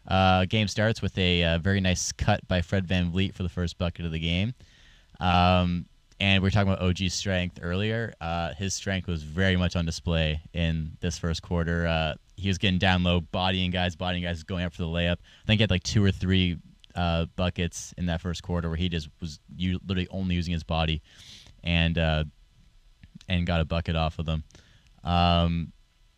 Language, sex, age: English, male, 20-39